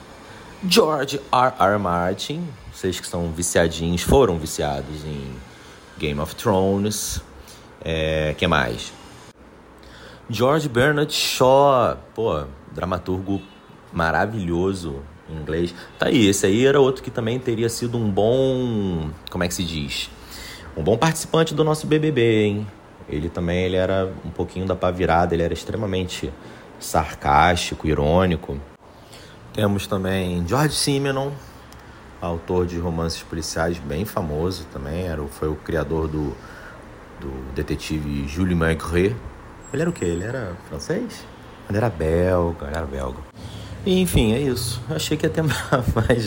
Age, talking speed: 30-49, 135 wpm